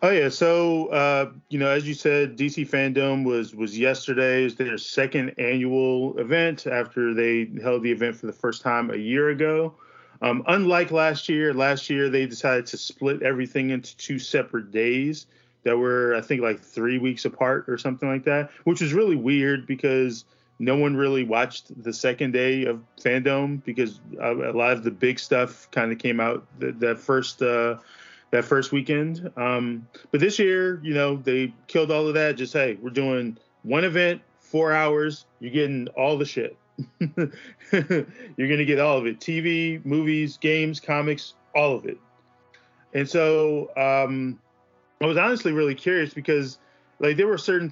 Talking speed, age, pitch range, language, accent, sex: 175 wpm, 20-39, 120-150 Hz, English, American, male